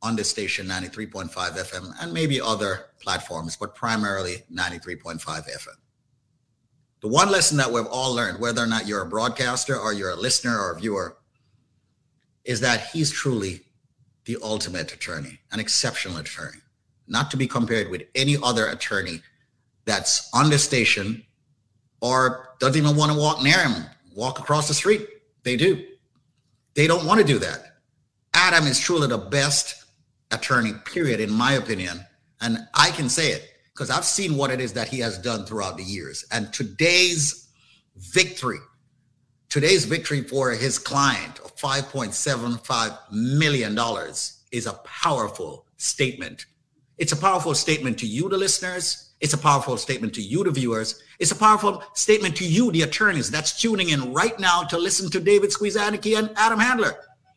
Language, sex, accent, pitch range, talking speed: English, male, American, 115-155 Hz, 165 wpm